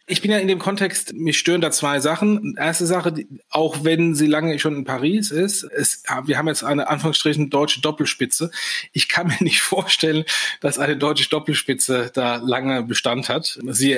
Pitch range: 135-155 Hz